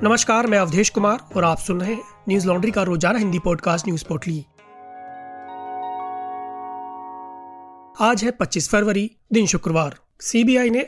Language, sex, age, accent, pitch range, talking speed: Hindi, male, 30-49, native, 180-215 Hz, 130 wpm